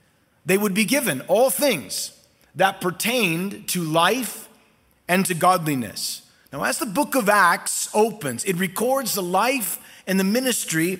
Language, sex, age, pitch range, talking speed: English, male, 30-49, 185-230 Hz, 145 wpm